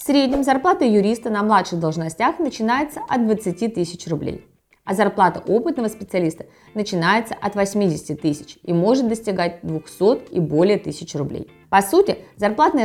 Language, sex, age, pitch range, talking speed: Russian, female, 20-39, 165-240 Hz, 145 wpm